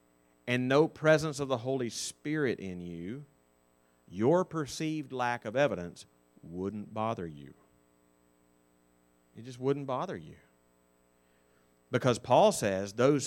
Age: 40-59